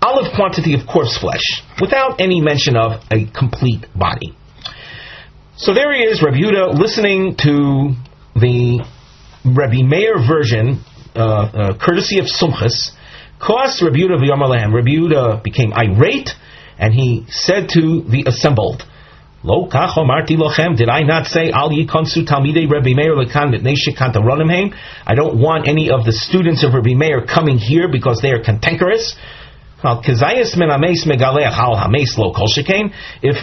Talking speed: 105 wpm